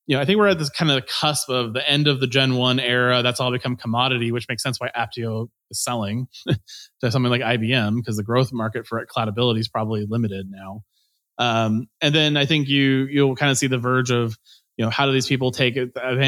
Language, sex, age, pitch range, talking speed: English, male, 20-39, 115-135 Hz, 245 wpm